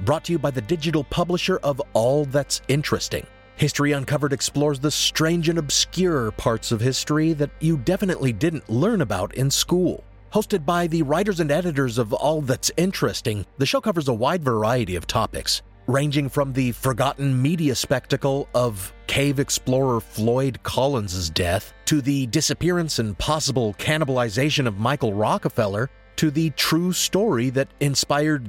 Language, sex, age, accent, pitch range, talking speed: English, male, 30-49, American, 115-155 Hz, 155 wpm